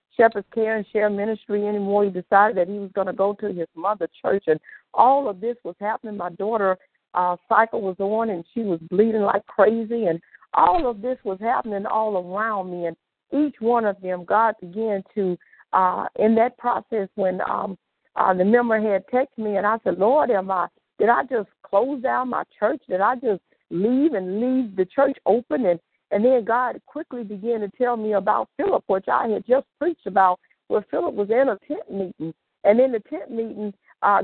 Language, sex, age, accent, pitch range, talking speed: English, female, 50-69, American, 195-250 Hz, 205 wpm